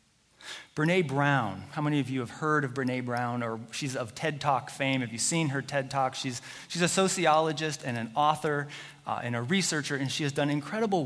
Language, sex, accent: English, male, American